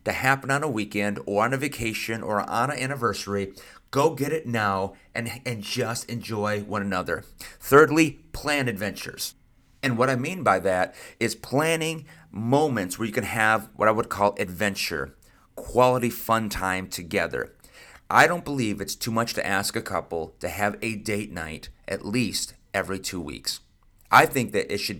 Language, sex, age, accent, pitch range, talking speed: English, male, 30-49, American, 100-125 Hz, 175 wpm